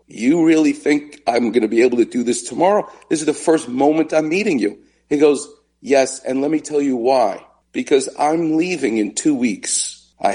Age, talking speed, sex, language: 50-69, 210 wpm, male, English